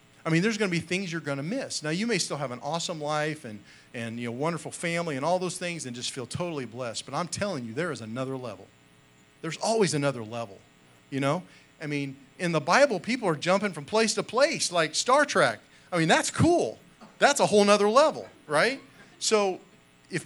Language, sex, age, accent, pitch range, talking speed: English, male, 40-59, American, 115-170 Hz, 220 wpm